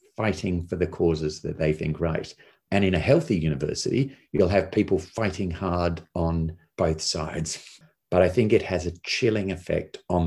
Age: 40-59